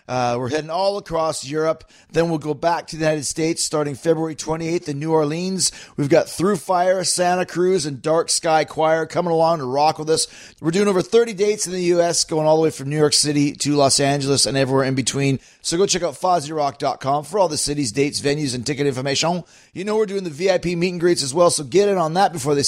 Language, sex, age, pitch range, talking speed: English, male, 30-49, 150-180 Hz, 240 wpm